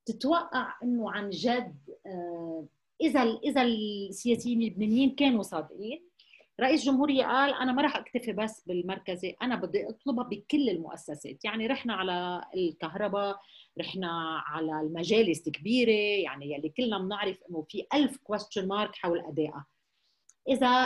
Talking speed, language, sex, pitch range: 125 wpm, Arabic, female, 185-270 Hz